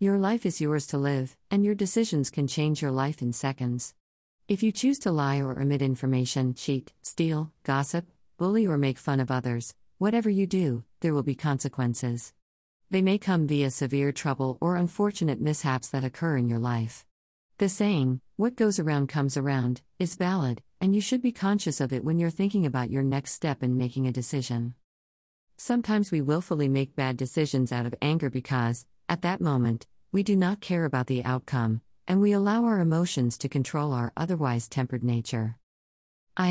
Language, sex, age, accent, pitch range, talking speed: English, female, 50-69, American, 130-175 Hz, 185 wpm